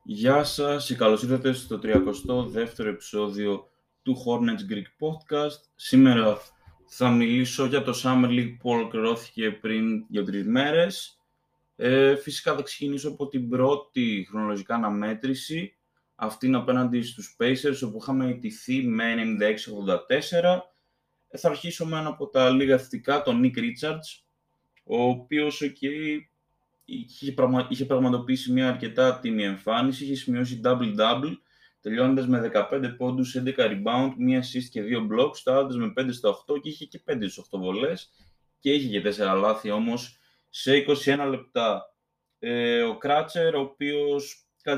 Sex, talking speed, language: male, 140 wpm, Greek